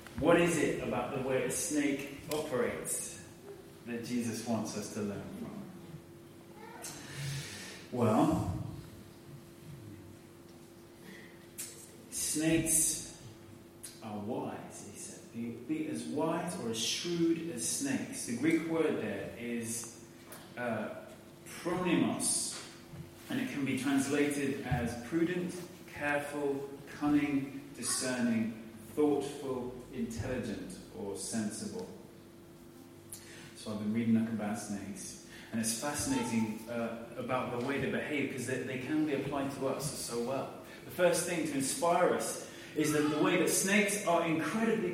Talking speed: 125 wpm